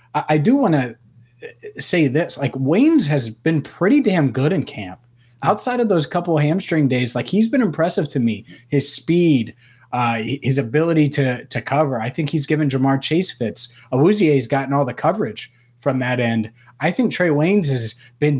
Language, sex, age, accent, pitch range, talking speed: English, male, 30-49, American, 120-145 Hz, 190 wpm